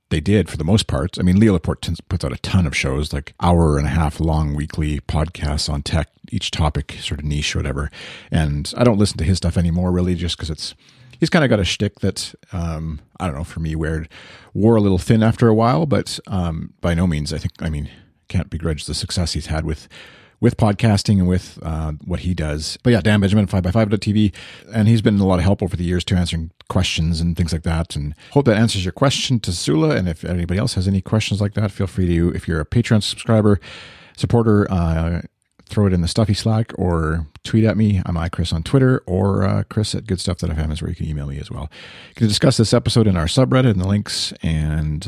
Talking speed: 240 wpm